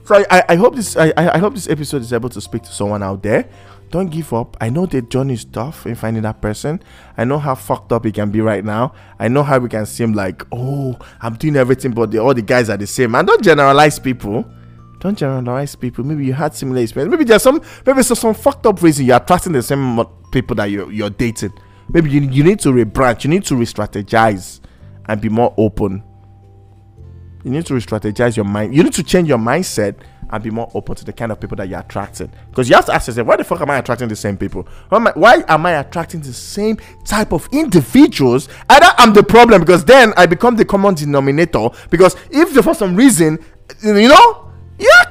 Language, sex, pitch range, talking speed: English, male, 110-180 Hz, 230 wpm